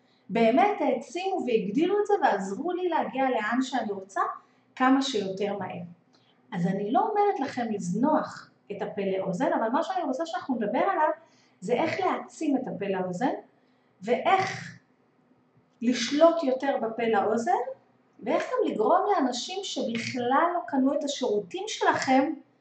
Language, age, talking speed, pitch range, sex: Hebrew, 30-49, 135 wpm, 225-330 Hz, female